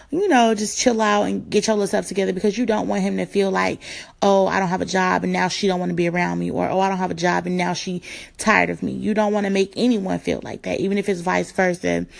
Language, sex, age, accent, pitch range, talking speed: English, female, 20-39, American, 170-210 Hz, 300 wpm